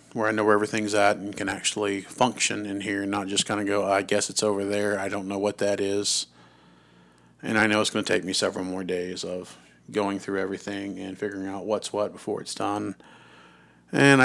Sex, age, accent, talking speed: male, 40-59, American, 225 wpm